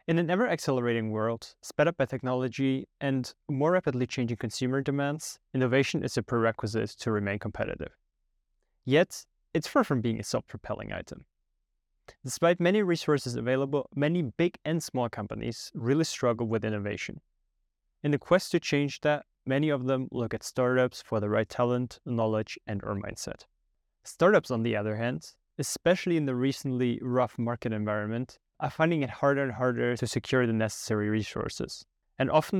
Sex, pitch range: male, 115-145 Hz